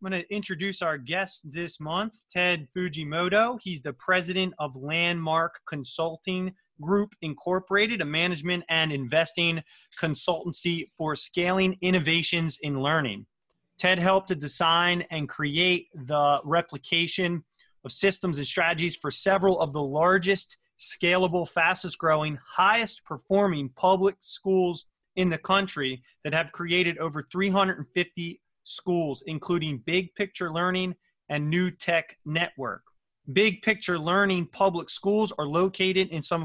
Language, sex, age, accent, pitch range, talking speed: English, male, 30-49, American, 155-185 Hz, 130 wpm